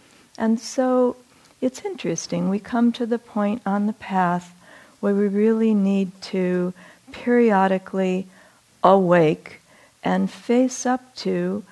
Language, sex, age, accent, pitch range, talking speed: English, female, 50-69, American, 185-230 Hz, 120 wpm